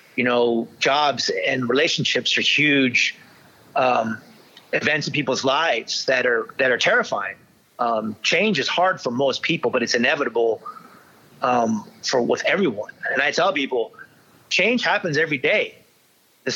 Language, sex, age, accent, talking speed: English, male, 30-49, American, 145 wpm